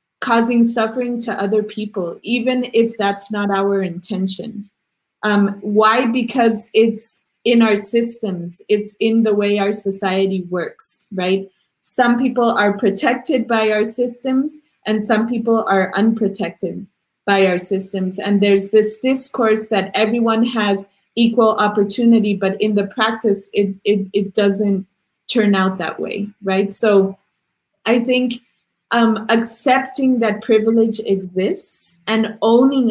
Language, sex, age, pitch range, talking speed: English, female, 30-49, 195-235 Hz, 135 wpm